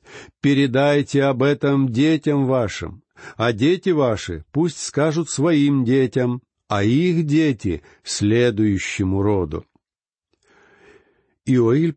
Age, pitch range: 60-79, 105-140 Hz